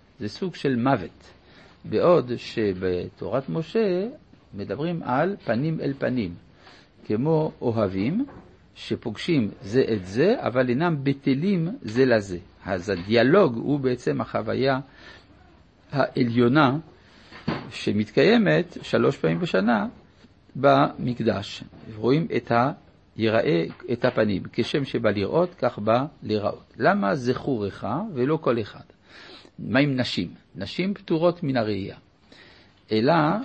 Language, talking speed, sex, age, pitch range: Hebrew, 105 wpm, male, 60-79, 105-160 Hz